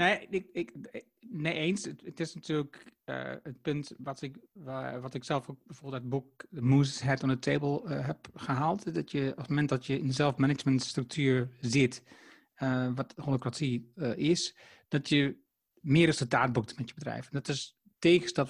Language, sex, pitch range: Dutch, male, 130-165 Hz